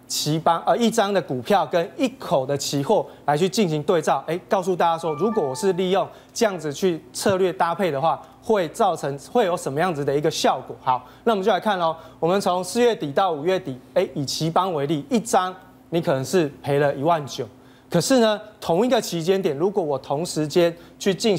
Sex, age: male, 20-39